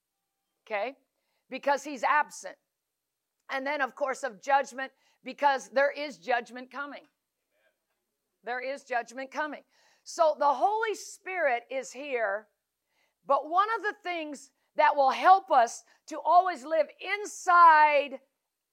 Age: 50-69